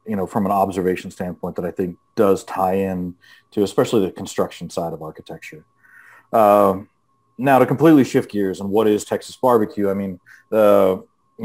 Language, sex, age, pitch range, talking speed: English, male, 30-49, 95-110 Hz, 180 wpm